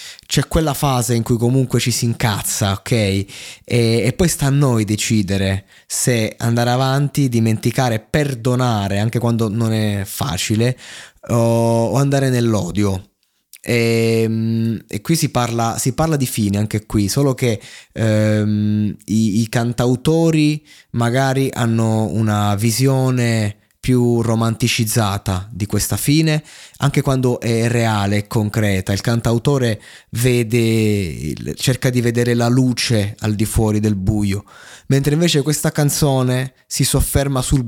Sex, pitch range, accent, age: male, 105-130 Hz, native, 20-39